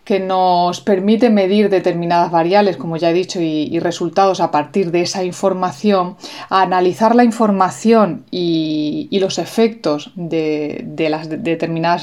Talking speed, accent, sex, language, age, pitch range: 155 wpm, Spanish, female, Spanish, 30-49, 165-205 Hz